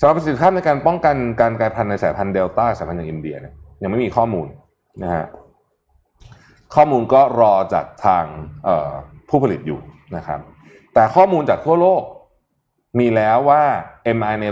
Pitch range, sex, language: 100-135 Hz, male, Thai